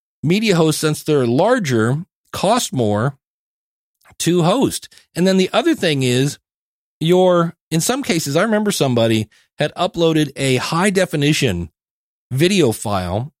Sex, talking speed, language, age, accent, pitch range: male, 130 wpm, English, 40-59, American, 120-170 Hz